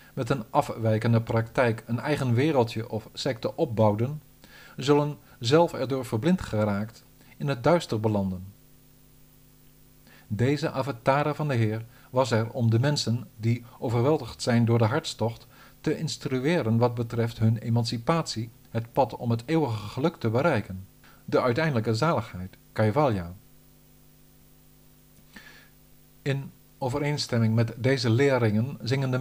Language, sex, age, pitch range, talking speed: Dutch, male, 50-69, 115-145 Hz, 125 wpm